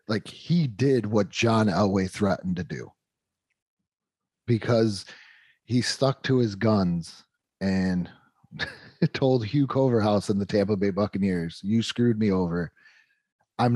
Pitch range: 105-145 Hz